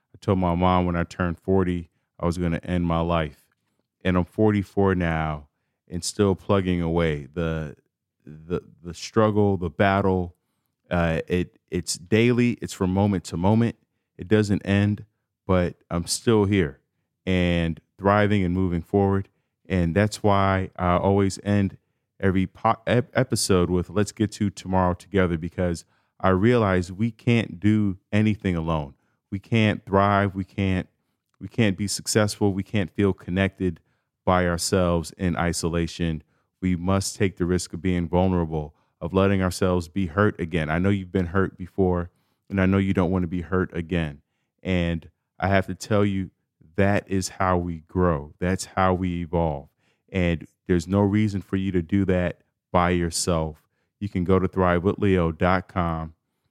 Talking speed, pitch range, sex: 160 wpm, 85-100 Hz, male